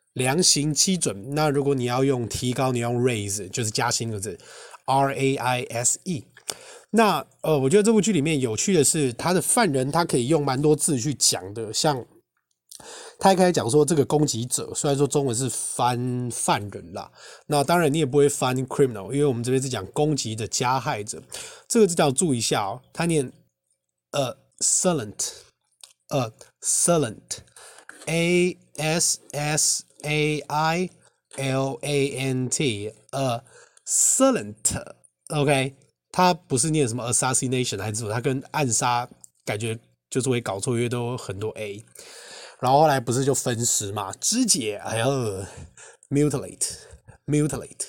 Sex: male